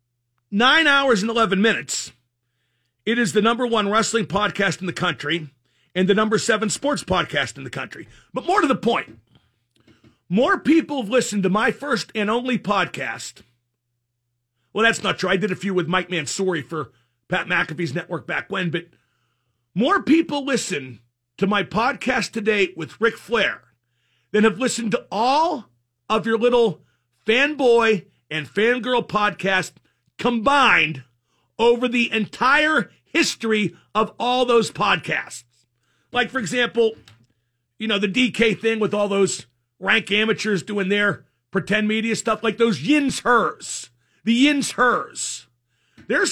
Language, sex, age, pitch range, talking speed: English, male, 50-69, 145-235 Hz, 150 wpm